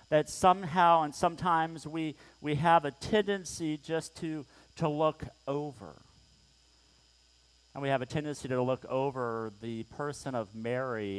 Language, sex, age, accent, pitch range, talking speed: English, male, 50-69, American, 110-155 Hz, 140 wpm